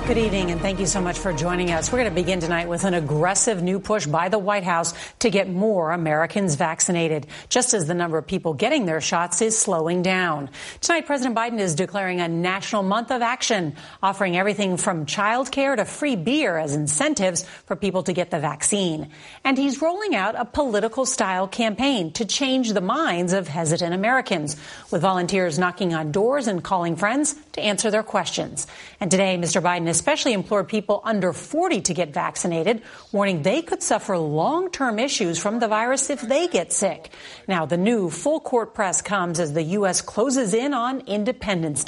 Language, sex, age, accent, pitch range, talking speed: English, female, 40-59, American, 175-225 Hz, 185 wpm